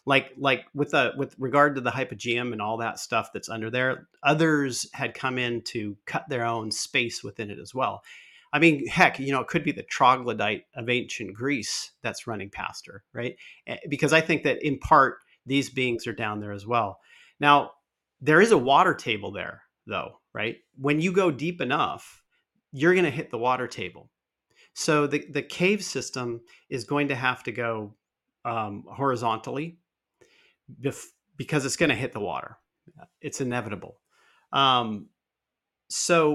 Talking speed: 175 wpm